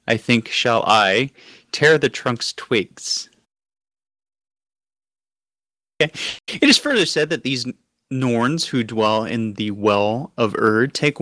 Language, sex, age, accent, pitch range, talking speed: English, male, 30-49, American, 110-135 Hz, 125 wpm